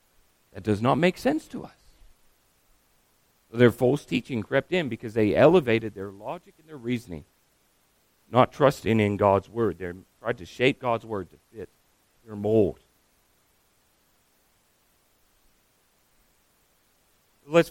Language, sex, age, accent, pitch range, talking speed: English, male, 40-59, American, 105-170 Hz, 120 wpm